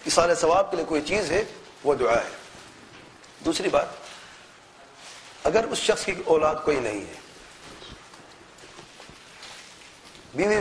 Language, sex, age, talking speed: English, male, 40-59, 120 wpm